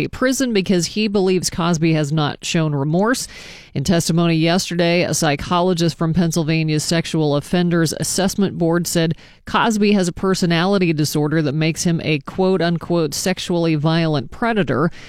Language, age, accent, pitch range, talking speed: English, 40-59, American, 155-190 Hz, 140 wpm